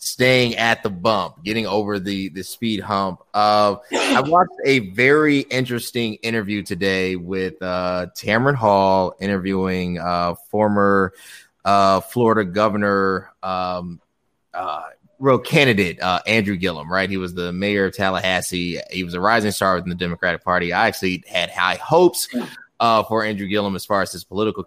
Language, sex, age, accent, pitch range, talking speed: English, male, 20-39, American, 95-130 Hz, 160 wpm